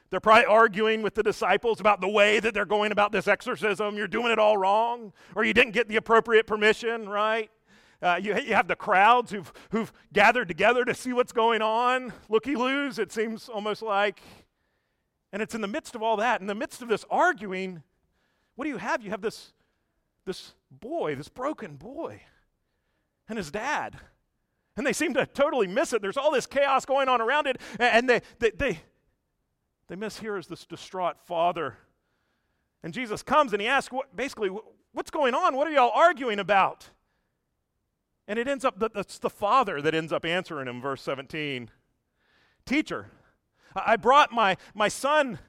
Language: English